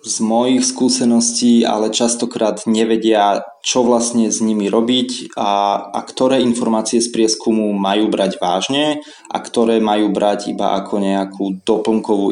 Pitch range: 95-115 Hz